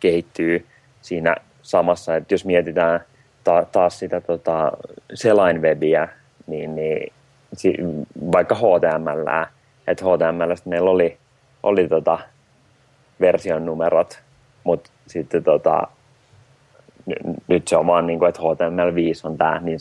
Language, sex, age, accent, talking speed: Finnish, male, 30-49, native, 110 wpm